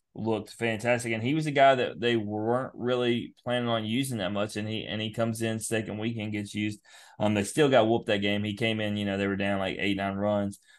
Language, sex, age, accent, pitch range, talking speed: English, male, 20-39, American, 105-125 Hz, 250 wpm